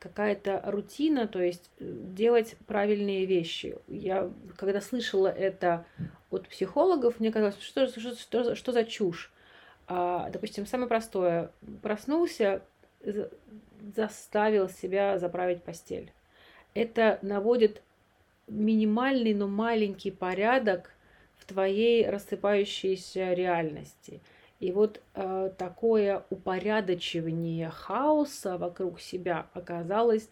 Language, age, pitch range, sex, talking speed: Russian, 30-49, 180-215 Hz, female, 90 wpm